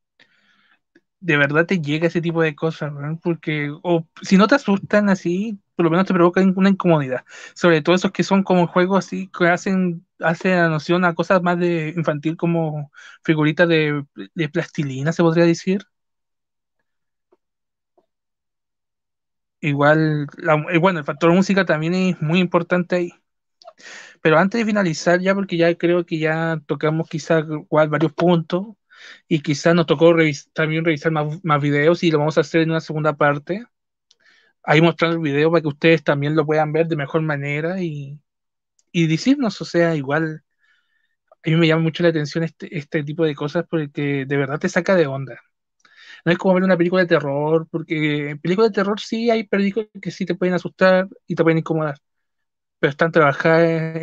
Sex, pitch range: male, 155-180 Hz